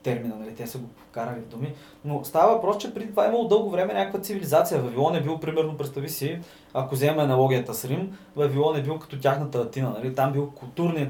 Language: Bulgarian